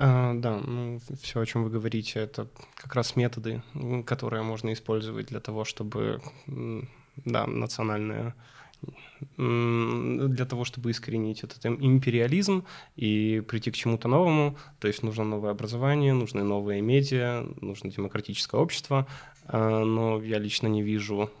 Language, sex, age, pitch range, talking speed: Russian, male, 20-39, 110-130 Hz, 130 wpm